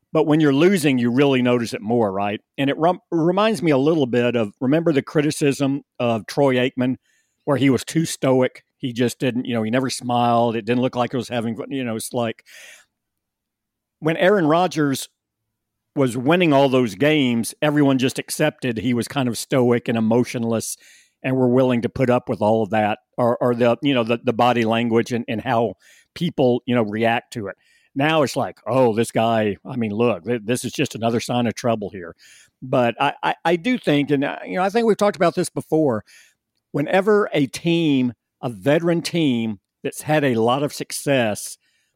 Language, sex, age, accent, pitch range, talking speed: English, male, 50-69, American, 115-145 Hz, 200 wpm